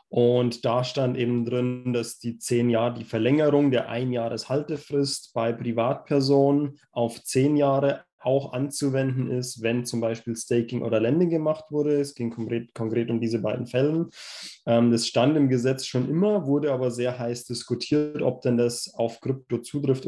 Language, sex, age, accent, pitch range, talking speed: English, male, 20-39, German, 120-145 Hz, 165 wpm